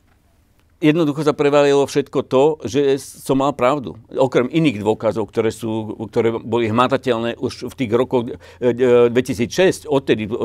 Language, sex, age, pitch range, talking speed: Slovak, male, 50-69, 110-140 Hz, 130 wpm